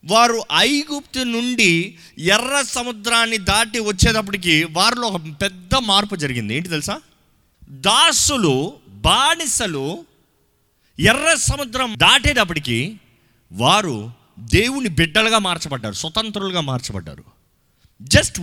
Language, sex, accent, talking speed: Telugu, male, native, 85 wpm